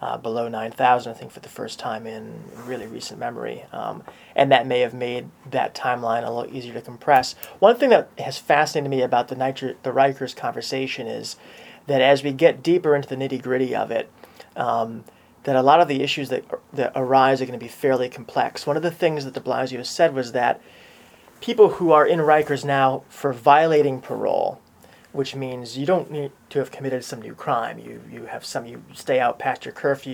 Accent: American